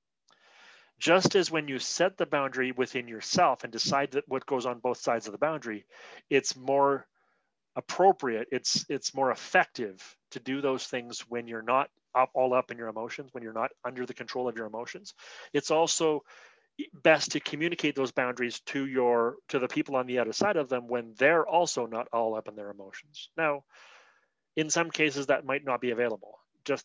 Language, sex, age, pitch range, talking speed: English, male, 30-49, 115-145 Hz, 190 wpm